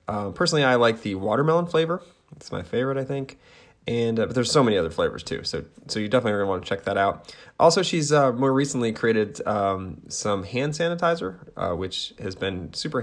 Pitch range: 100-125 Hz